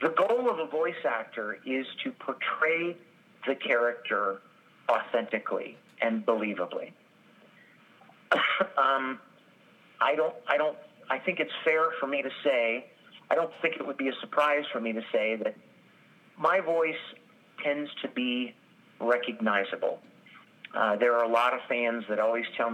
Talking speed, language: 150 wpm, English